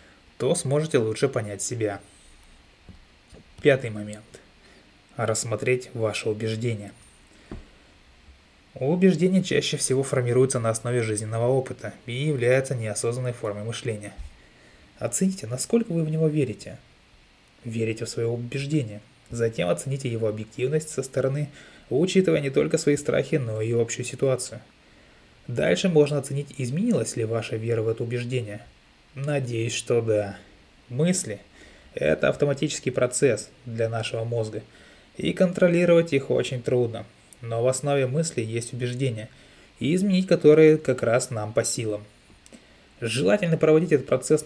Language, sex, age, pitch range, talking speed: Russian, male, 20-39, 110-145 Hz, 125 wpm